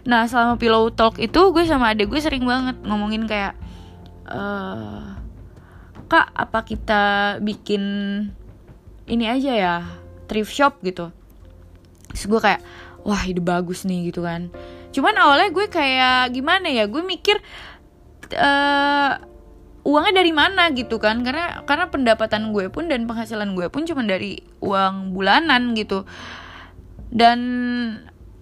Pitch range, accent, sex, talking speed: 185-255 Hz, native, female, 130 wpm